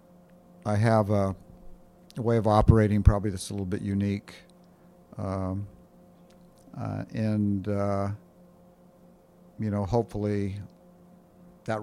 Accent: American